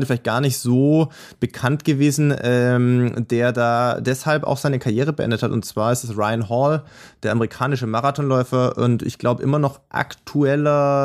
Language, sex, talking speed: German, male, 165 wpm